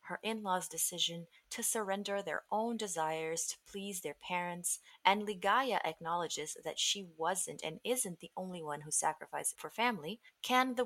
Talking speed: 160 wpm